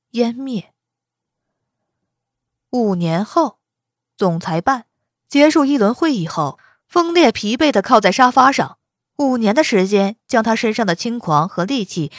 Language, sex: Chinese, female